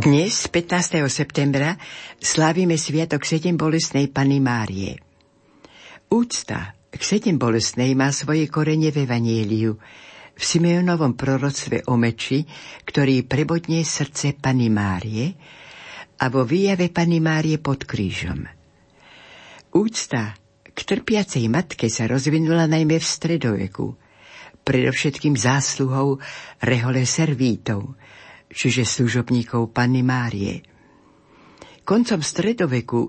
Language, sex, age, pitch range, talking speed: Slovak, female, 60-79, 120-155 Hz, 95 wpm